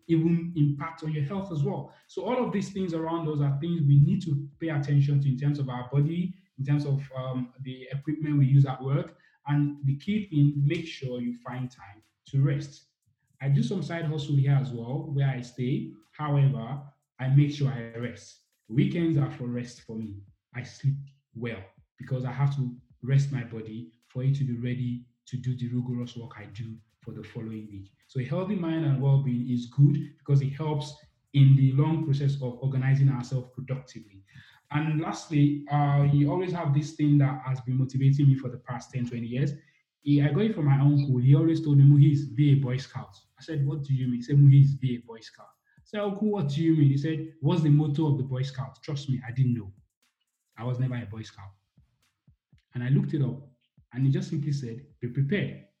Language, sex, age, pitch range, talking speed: English, male, 20-39, 125-150 Hz, 220 wpm